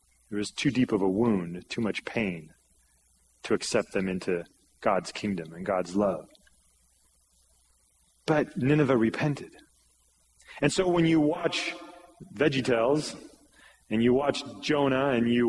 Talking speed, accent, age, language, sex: 130 wpm, American, 30-49, English, male